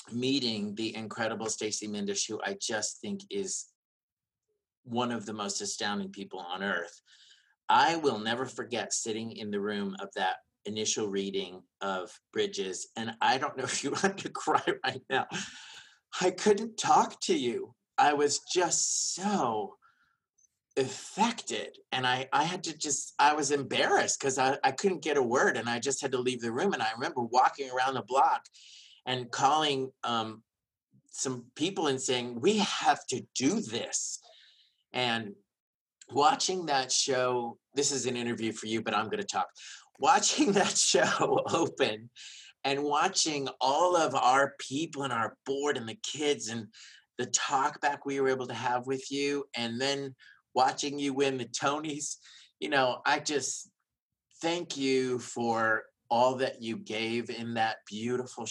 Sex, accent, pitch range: male, American, 110-145 Hz